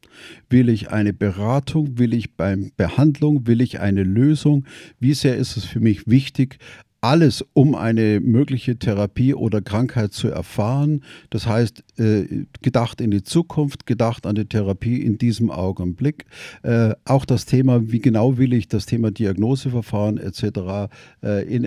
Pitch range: 110-130 Hz